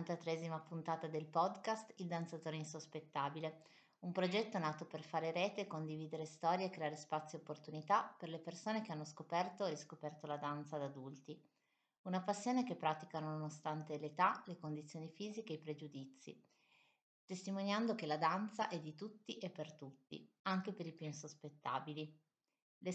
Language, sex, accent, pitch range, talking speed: Italian, female, native, 150-185 Hz, 160 wpm